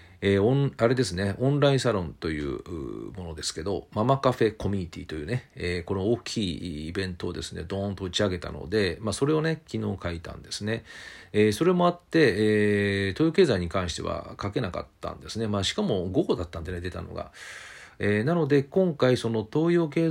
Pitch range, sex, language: 90-145 Hz, male, Japanese